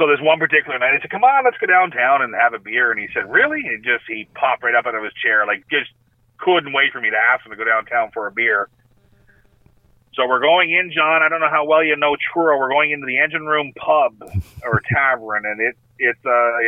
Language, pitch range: English, 120-160 Hz